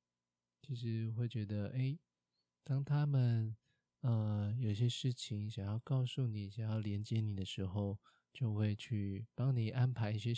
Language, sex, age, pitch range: Chinese, male, 20-39, 100-120 Hz